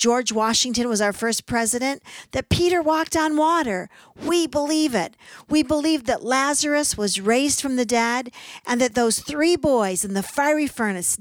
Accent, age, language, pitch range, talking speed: American, 50-69, English, 200-265 Hz, 170 wpm